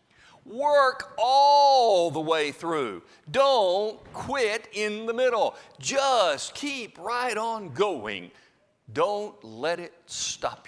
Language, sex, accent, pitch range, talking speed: English, male, American, 165-275 Hz, 105 wpm